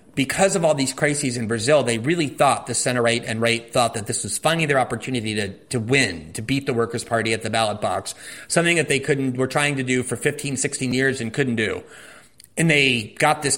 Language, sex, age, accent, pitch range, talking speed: English, male, 30-49, American, 120-150 Hz, 235 wpm